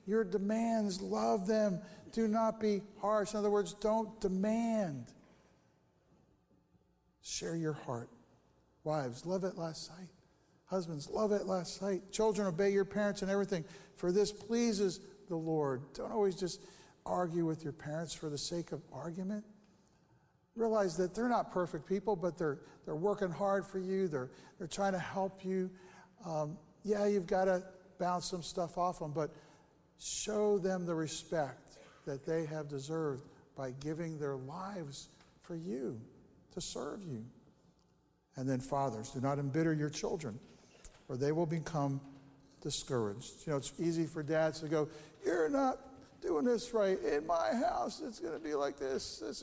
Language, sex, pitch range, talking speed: English, male, 155-205 Hz, 160 wpm